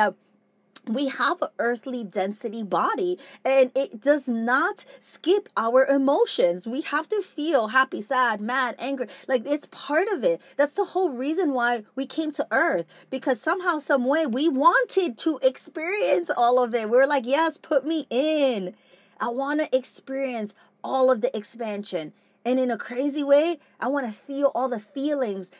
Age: 20-39